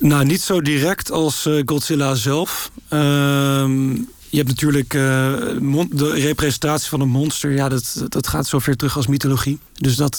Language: Dutch